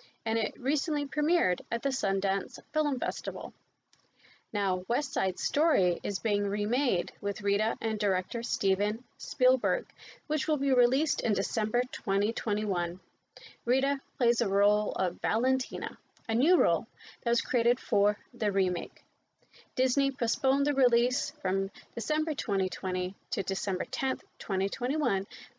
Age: 30-49